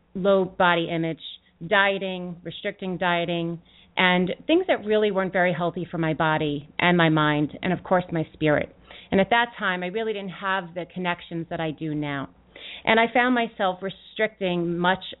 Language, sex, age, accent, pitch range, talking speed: English, female, 30-49, American, 170-215 Hz, 175 wpm